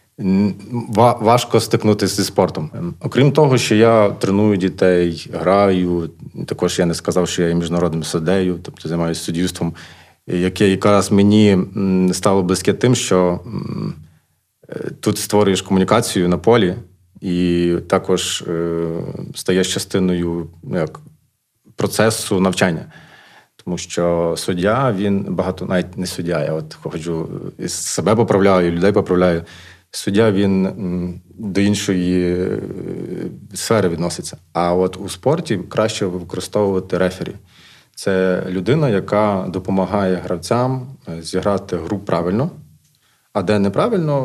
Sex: male